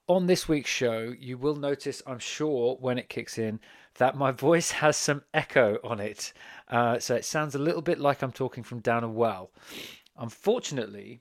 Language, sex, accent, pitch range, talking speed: English, male, British, 110-140 Hz, 195 wpm